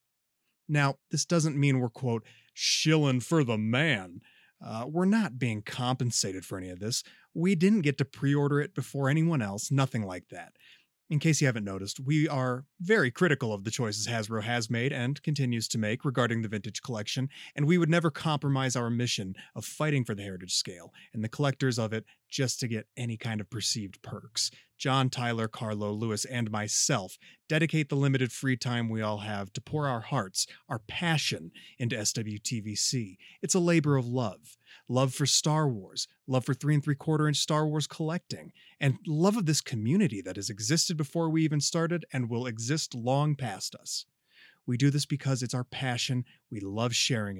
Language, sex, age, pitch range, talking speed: English, male, 30-49, 115-150 Hz, 190 wpm